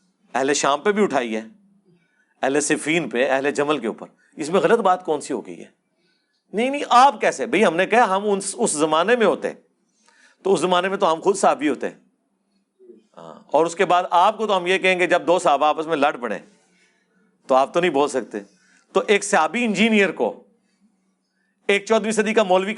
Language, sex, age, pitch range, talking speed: Urdu, male, 50-69, 145-200 Hz, 210 wpm